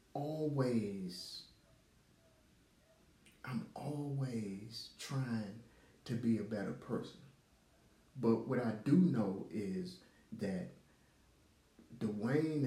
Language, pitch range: English, 105-130 Hz